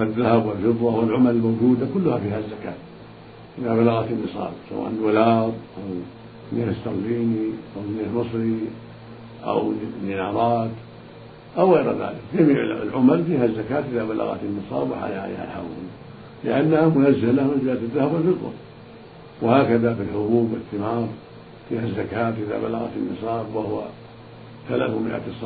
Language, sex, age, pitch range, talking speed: Arabic, male, 50-69, 110-120 Hz, 140 wpm